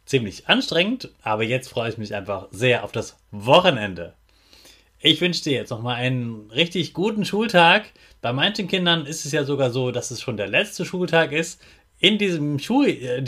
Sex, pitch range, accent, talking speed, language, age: male, 120-165 Hz, German, 185 wpm, German, 30-49